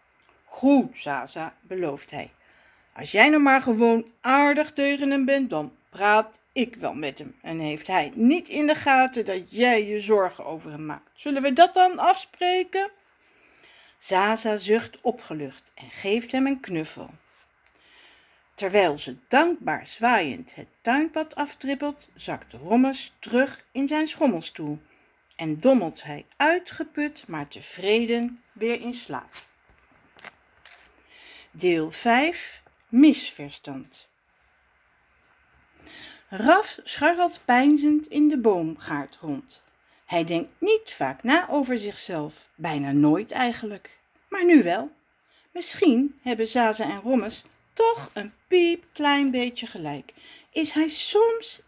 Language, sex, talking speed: Dutch, female, 120 wpm